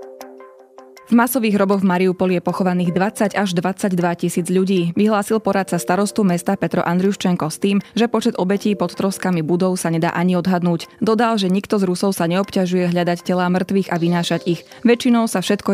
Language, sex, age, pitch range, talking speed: Slovak, female, 20-39, 170-200 Hz, 175 wpm